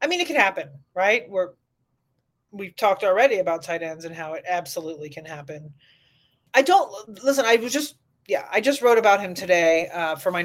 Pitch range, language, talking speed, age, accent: 160-205 Hz, English, 195 wpm, 30-49, American